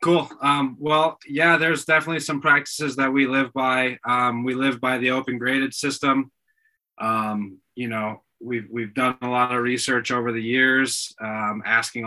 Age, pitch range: 20-39, 115-135 Hz